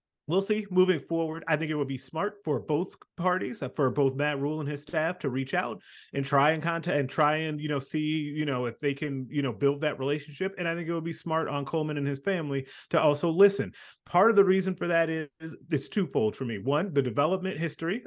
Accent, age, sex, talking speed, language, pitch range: American, 30-49, male, 245 wpm, English, 135-170 Hz